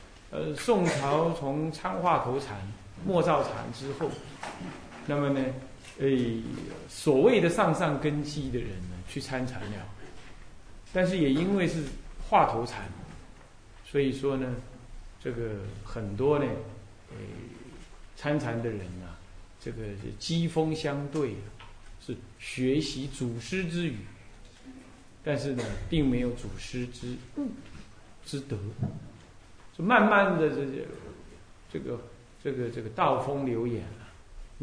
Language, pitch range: Chinese, 105-140 Hz